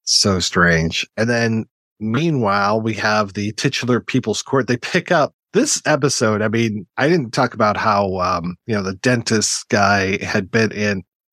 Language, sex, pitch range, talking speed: English, male, 105-135 Hz, 170 wpm